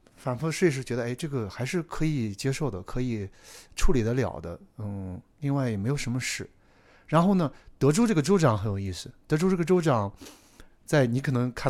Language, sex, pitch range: Chinese, male, 100-145 Hz